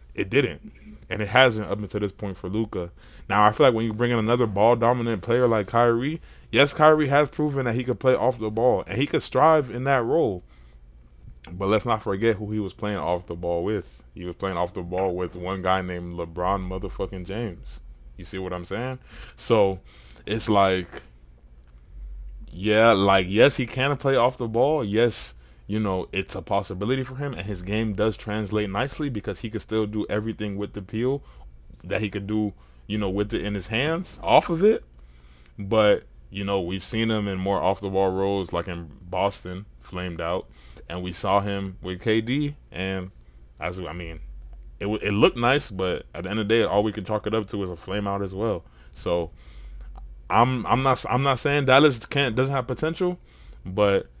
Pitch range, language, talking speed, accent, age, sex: 90-115 Hz, English, 205 wpm, American, 20-39, male